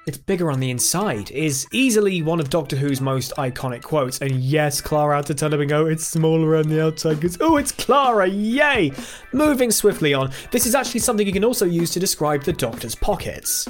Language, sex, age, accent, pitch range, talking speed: English, male, 20-39, British, 140-205 Hz, 215 wpm